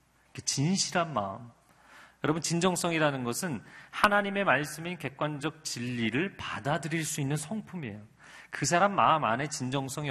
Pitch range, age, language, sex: 125-190 Hz, 40-59, Korean, male